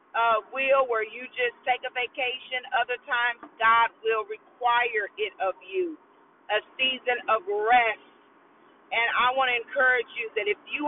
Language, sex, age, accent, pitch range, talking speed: English, female, 40-59, American, 235-295 Hz, 160 wpm